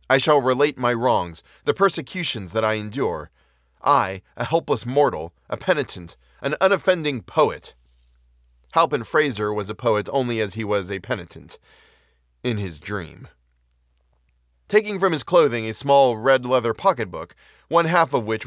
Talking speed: 150 wpm